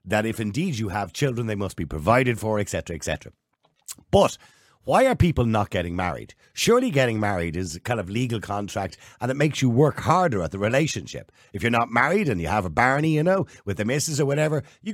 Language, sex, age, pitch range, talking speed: English, male, 50-69, 100-145 Hz, 220 wpm